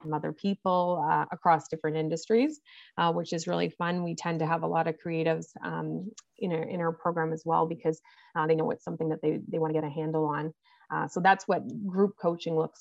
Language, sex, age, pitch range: English, female, 30-49, 160-170 Hz